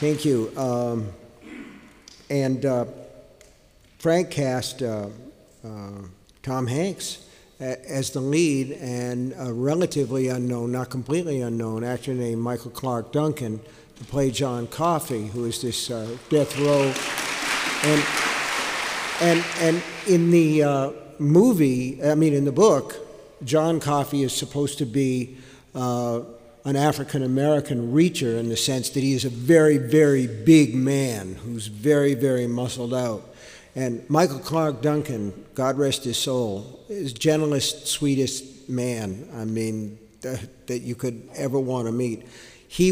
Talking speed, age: 135 wpm, 50-69